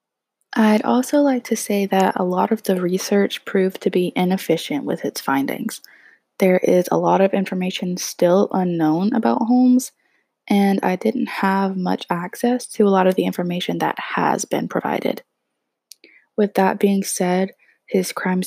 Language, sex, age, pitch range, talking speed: English, female, 20-39, 175-210 Hz, 160 wpm